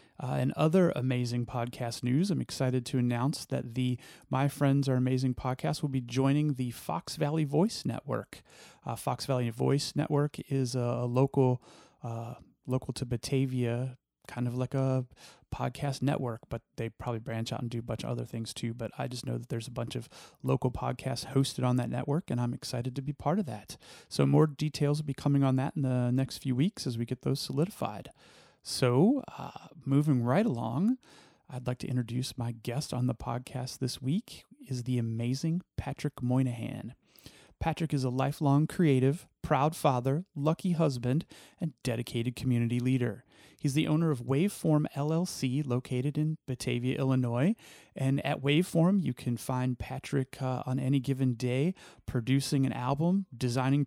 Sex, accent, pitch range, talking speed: male, American, 125-150 Hz, 175 wpm